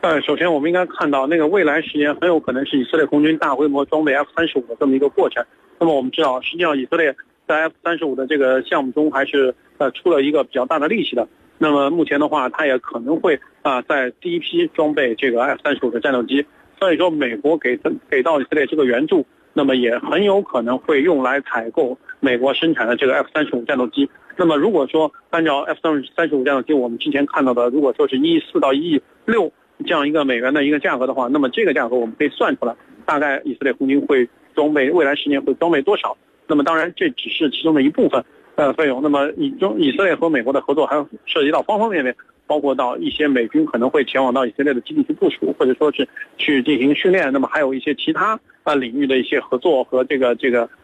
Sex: male